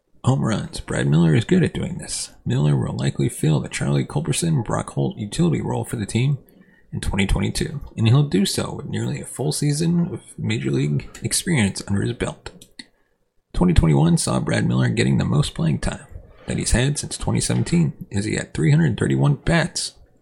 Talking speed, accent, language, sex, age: 175 wpm, American, English, male, 30-49